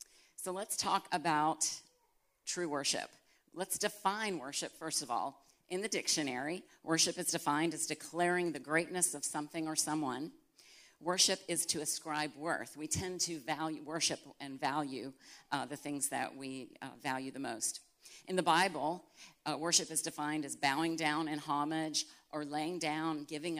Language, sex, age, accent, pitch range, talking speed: English, female, 50-69, American, 145-165 Hz, 160 wpm